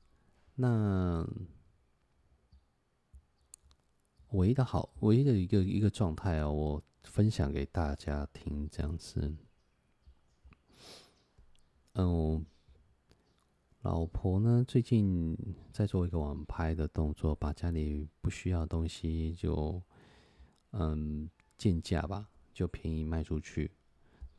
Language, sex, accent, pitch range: Chinese, male, native, 75-90 Hz